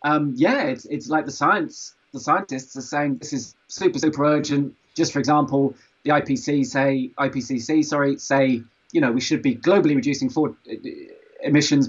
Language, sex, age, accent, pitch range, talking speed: English, male, 20-39, British, 135-185 Hz, 165 wpm